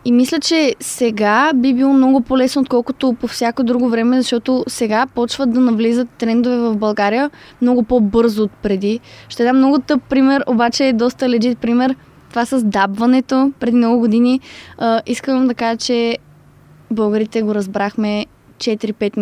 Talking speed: 155 wpm